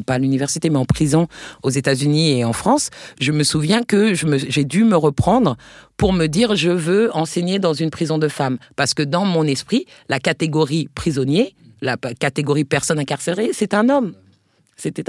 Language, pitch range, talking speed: French, 135-170 Hz, 190 wpm